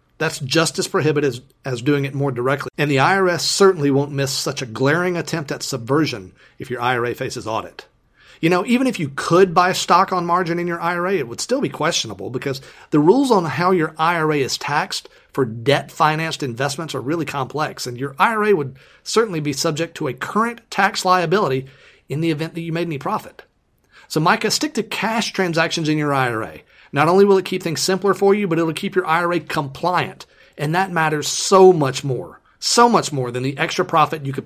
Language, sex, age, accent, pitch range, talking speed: English, male, 40-59, American, 140-185 Hz, 205 wpm